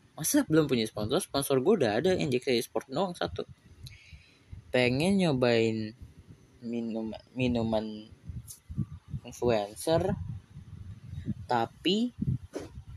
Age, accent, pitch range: 20-39, native, 110-135 Hz